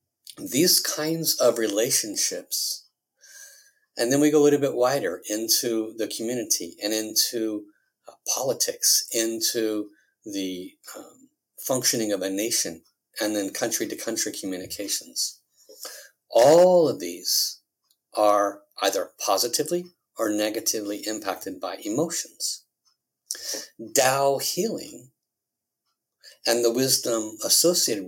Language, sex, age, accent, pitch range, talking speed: English, male, 50-69, American, 110-165 Hz, 100 wpm